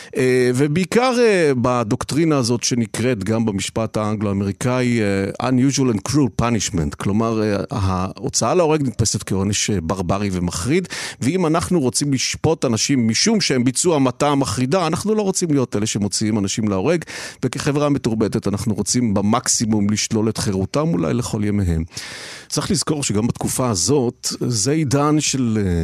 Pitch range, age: 105-145 Hz, 50-69